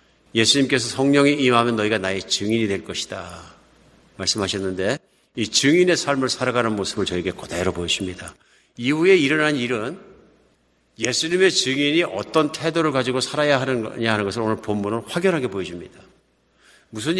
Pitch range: 110-155 Hz